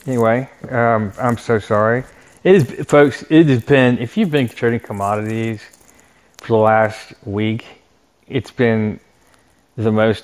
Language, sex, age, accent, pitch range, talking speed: English, male, 30-49, American, 105-120 Hz, 130 wpm